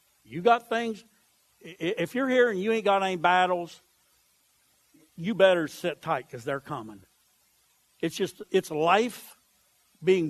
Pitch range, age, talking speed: 155-245 Hz, 60-79, 140 wpm